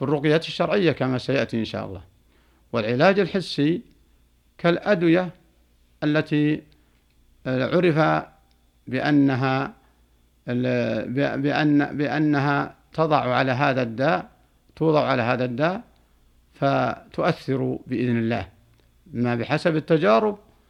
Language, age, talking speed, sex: Arabic, 60-79, 85 wpm, male